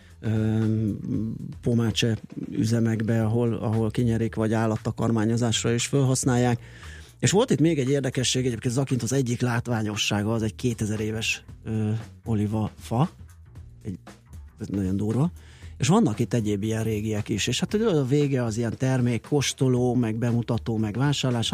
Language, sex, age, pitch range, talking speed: Hungarian, male, 30-49, 105-125 Hz, 140 wpm